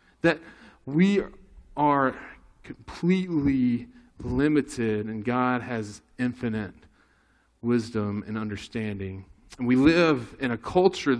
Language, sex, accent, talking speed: English, male, American, 95 wpm